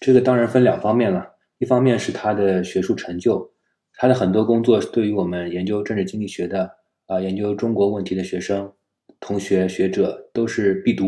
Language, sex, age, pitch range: Chinese, male, 20-39, 95-120 Hz